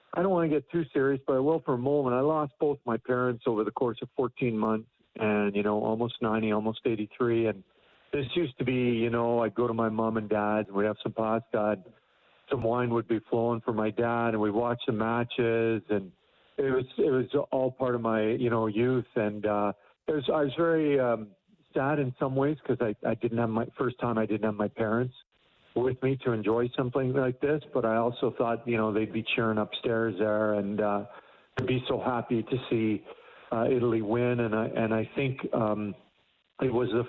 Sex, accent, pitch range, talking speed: male, American, 110-130 Hz, 225 wpm